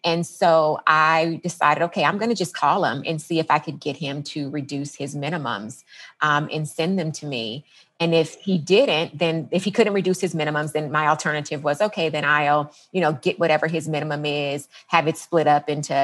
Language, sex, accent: English, female, American